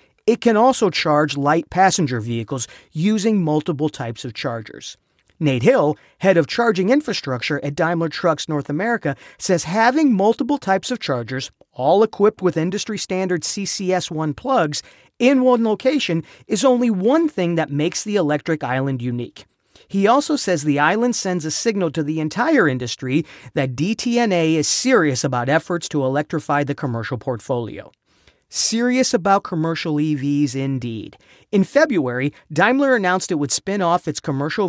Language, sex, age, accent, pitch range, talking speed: English, male, 40-59, American, 140-210 Hz, 150 wpm